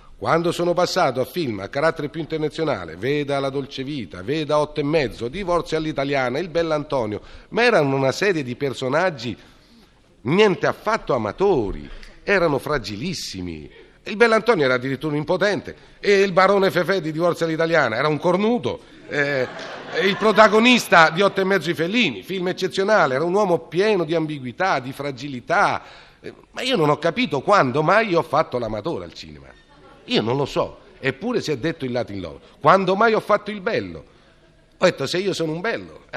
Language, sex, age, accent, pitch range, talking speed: Italian, male, 40-59, native, 130-185 Hz, 175 wpm